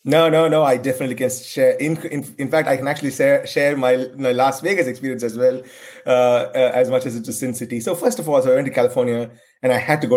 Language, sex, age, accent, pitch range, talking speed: English, male, 30-49, Indian, 115-150 Hz, 270 wpm